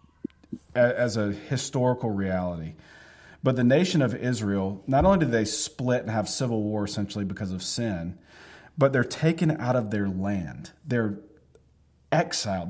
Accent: American